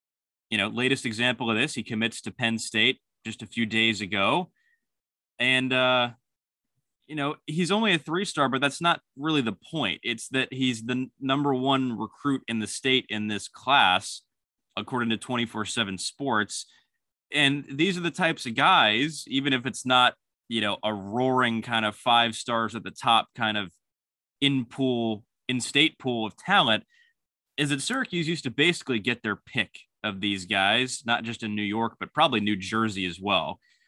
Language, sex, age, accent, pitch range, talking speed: English, male, 20-39, American, 110-140 Hz, 175 wpm